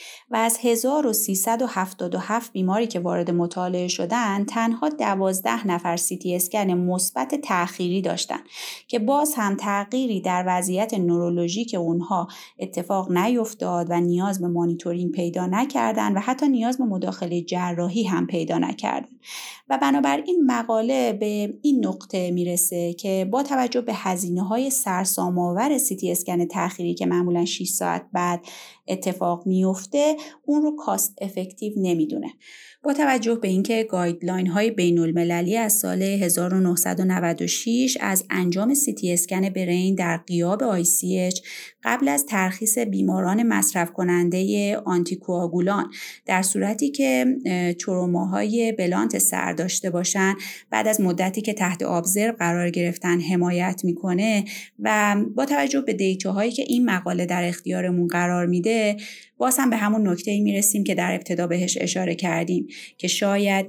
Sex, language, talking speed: female, Persian, 135 wpm